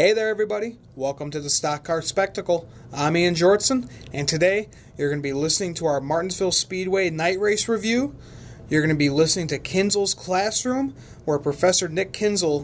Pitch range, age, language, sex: 140-180 Hz, 30-49, English, male